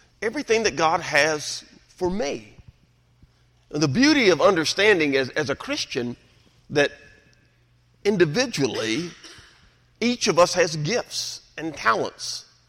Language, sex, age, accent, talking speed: English, male, 50-69, American, 115 wpm